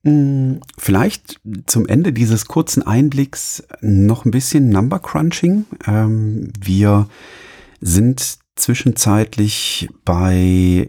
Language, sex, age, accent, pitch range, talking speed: German, male, 40-59, German, 85-110 Hz, 75 wpm